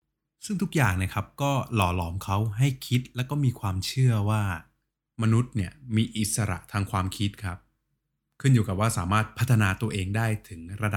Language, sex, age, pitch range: Thai, male, 20-39, 100-125 Hz